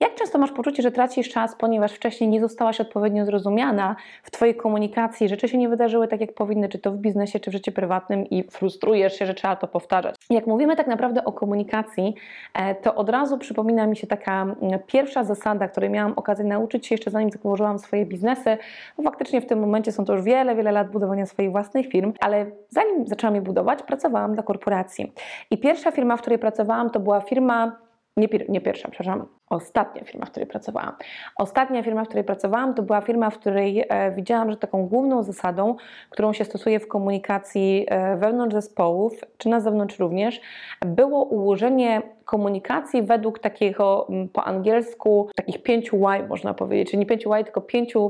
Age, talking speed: 20-39, 190 wpm